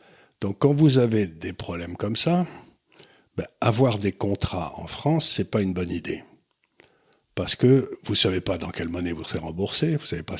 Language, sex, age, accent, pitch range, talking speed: French, male, 60-79, French, 85-120 Hz, 210 wpm